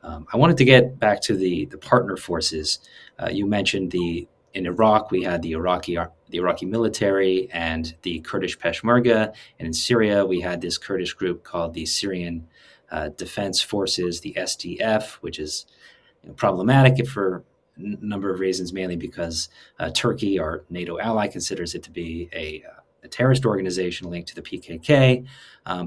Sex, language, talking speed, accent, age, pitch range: male, English, 170 wpm, American, 30-49, 85-115 Hz